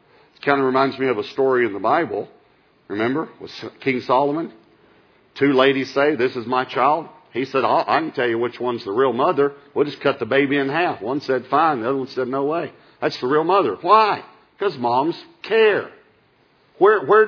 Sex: male